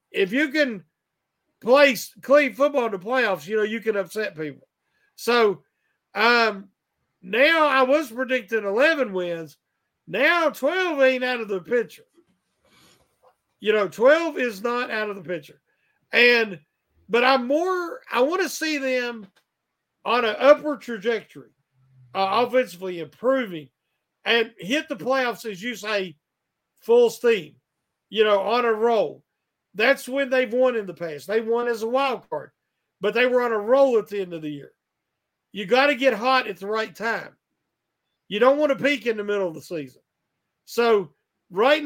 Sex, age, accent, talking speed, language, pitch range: male, 50-69, American, 165 wpm, English, 205-265 Hz